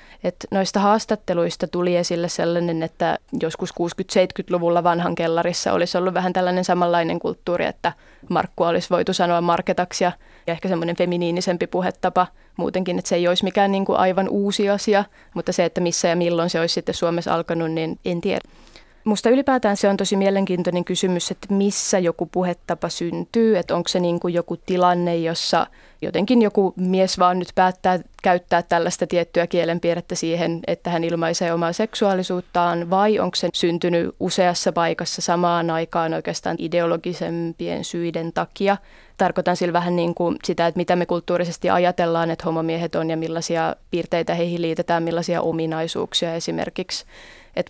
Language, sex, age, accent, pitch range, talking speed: Finnish, female, 20-39, native, 170-185 Hz, 150 wpm